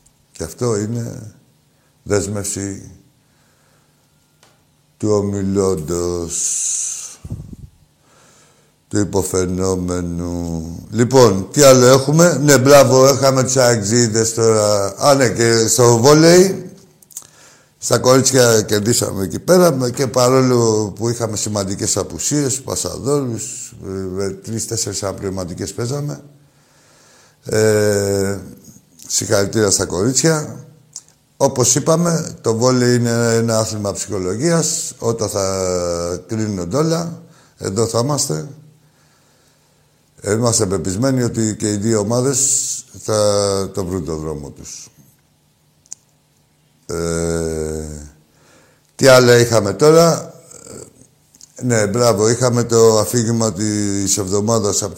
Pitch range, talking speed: 100-135 Hz, 90 wpm